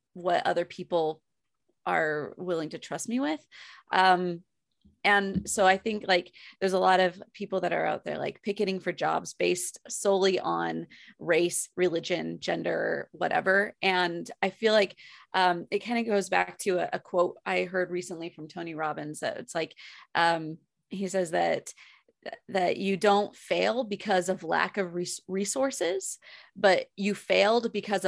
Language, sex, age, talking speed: English, female, 20-39, 160 wpm